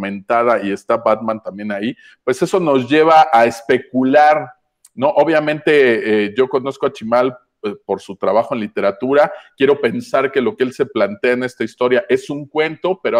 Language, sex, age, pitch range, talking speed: Spanish, male, 40-59, 115-150 Hz, 175 wpm